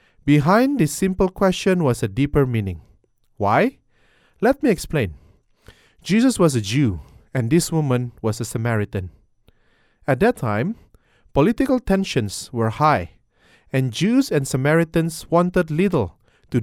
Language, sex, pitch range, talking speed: English, male, 115-175 Hz, 130 wpm